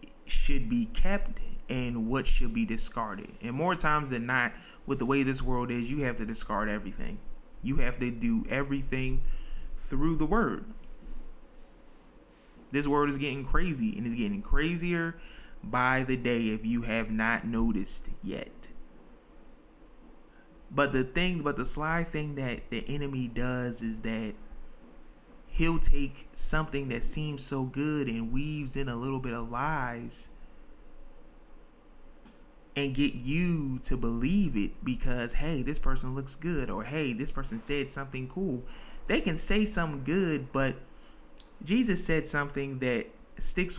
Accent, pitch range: American, 125-155 Hz